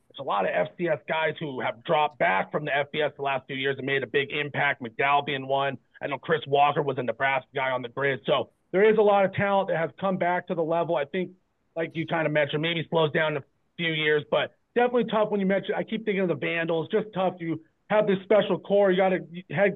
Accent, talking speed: American, 265 wpm